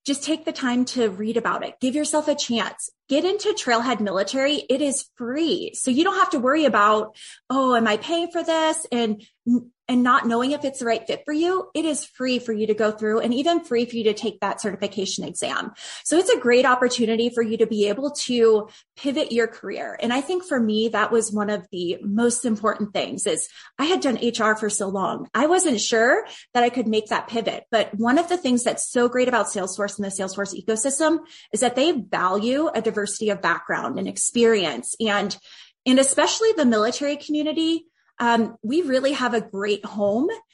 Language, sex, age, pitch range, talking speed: English, female, 20-39, 215-275 Hz, 210 wpm